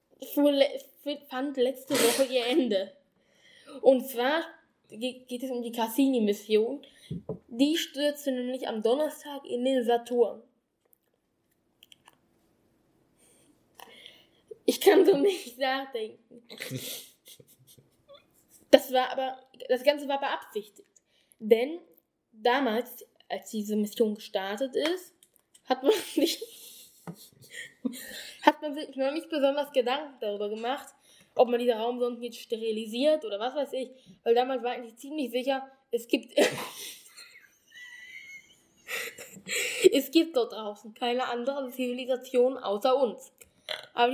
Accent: German